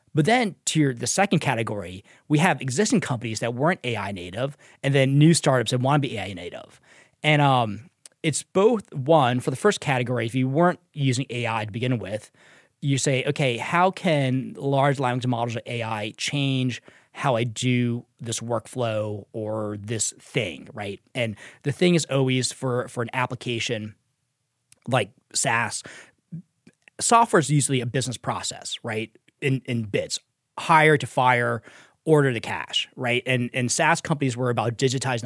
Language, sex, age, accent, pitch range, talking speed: English, male, 20-39, American, 120-150 Hz, 165 wpm